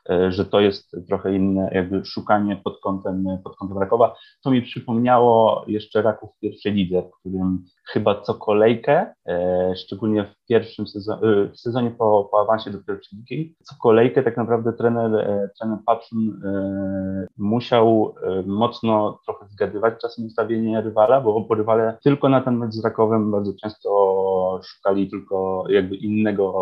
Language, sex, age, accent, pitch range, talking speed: Polish, male, 30-49, native, 100-120 Hz, 145 wpm